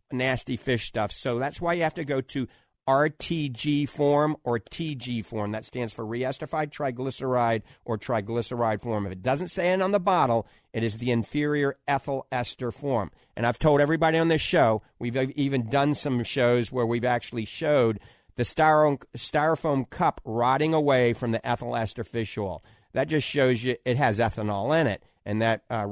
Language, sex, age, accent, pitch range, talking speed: English, male, 50-69, American, 115-140 Hz, 185 wpm